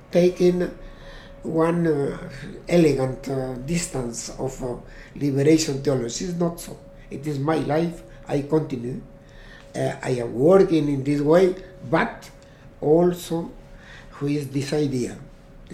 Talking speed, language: 120 wpm, English